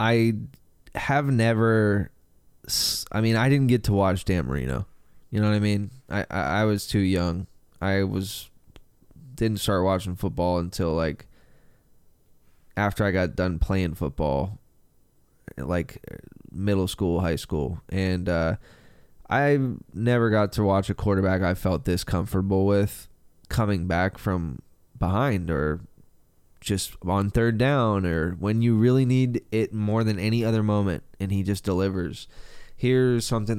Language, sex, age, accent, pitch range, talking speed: English, male, 20-39, American, 90-110 Hz, 150 wpm